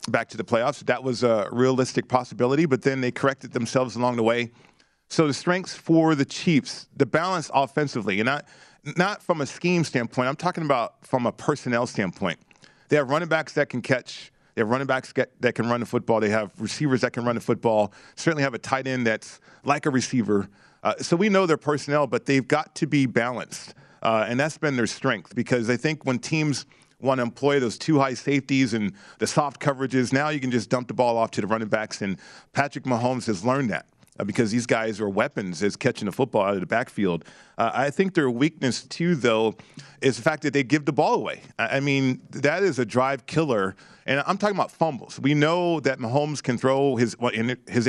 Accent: American